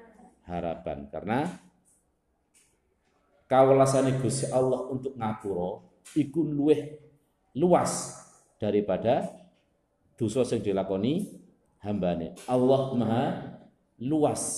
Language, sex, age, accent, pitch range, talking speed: Indonesian, male, 50-69, native, 100-135 Hz, 65 wpm